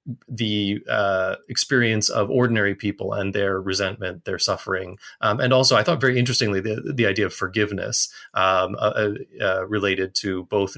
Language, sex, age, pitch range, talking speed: English, male, 30-49, 95-120 Hz, 160 wpm